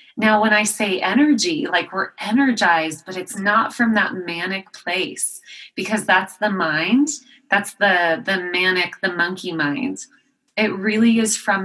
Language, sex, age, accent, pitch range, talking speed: English, female, 30-49, American, 180-220 Hz, 155 wpm